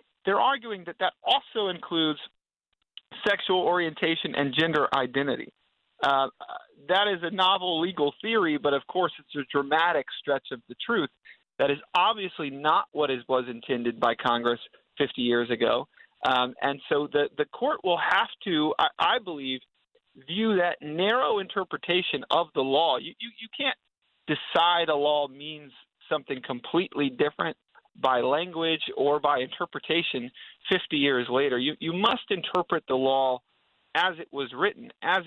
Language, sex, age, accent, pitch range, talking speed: English, male, 40-59, American, 135-180 Hz, 155 wpm